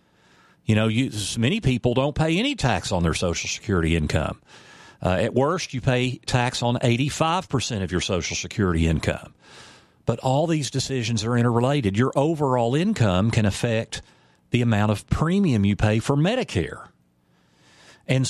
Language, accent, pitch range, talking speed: English, American, 100-135 Hz, 150 wpm